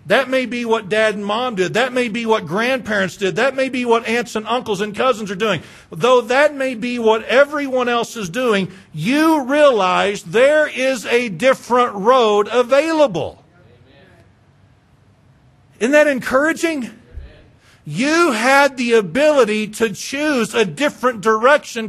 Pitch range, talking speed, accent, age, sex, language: 200-265 Hz, 150 wpm, American, 50-69, male, English